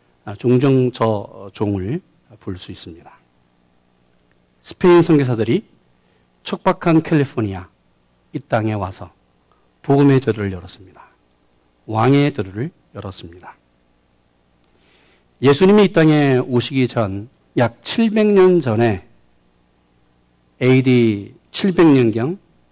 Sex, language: male, Korean